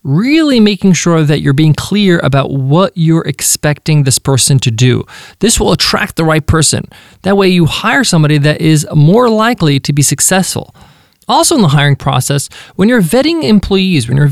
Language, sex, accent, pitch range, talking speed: English, male, American, 145-205 Hz, 185 wpm